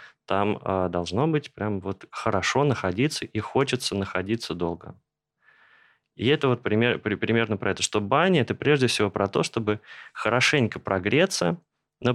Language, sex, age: Russian, male, 20-39